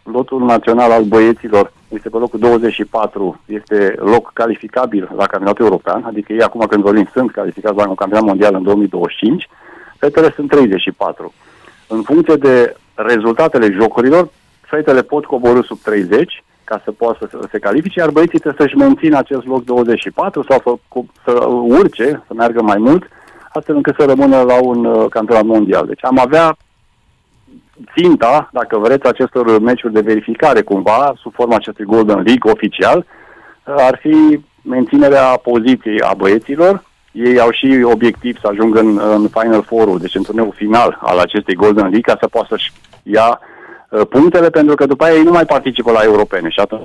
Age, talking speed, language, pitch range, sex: 40-59, 165 wpm, Romanian, 110-140 Hz, male